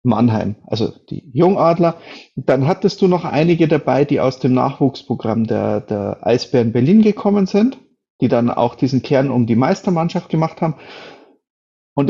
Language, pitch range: German, 115-160 Hz